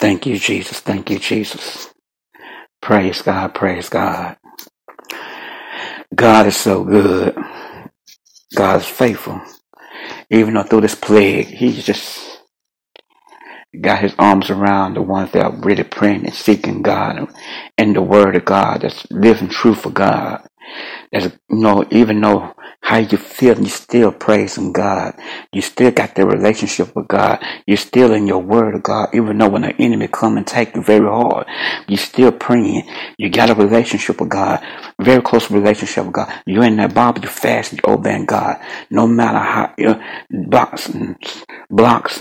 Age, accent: 60-79, American